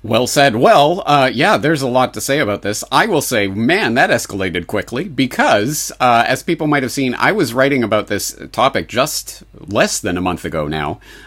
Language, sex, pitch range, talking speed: English, male, 95-130 Hz, 215 wpm